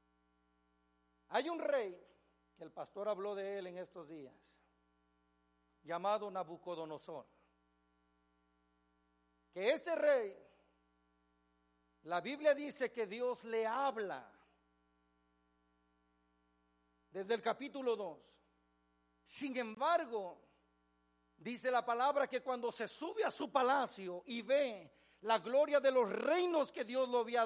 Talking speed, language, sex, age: 110 wpm, Spanish, male, 50-69